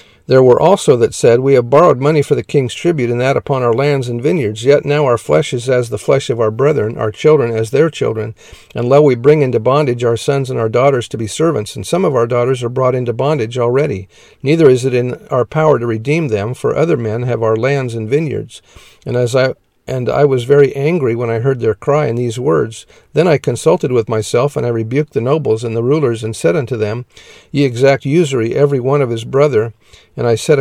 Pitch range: 120-145 Hz